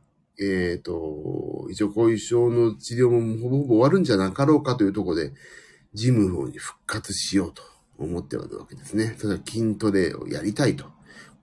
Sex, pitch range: male, 100-150 Hz